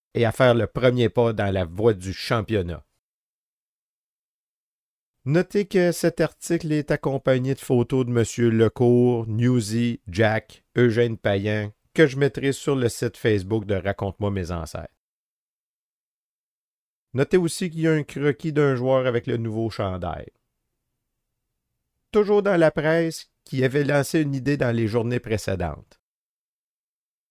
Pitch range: 105-140 Hz